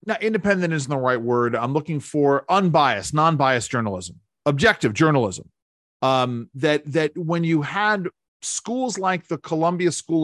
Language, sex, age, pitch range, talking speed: English, male, 40-59, 125-165 Hz, 145 wpm